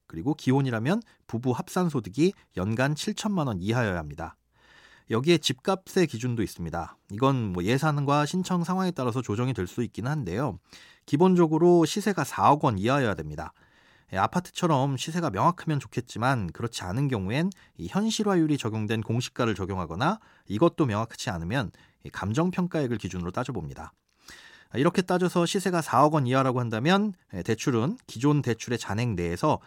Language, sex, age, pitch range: Korean, male, 30-49, 110-170 Hz